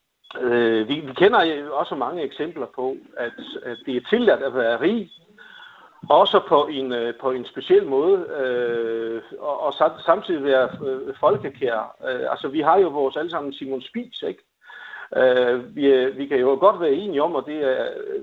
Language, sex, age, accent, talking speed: Danish, male, 60-79, native, 170 wpm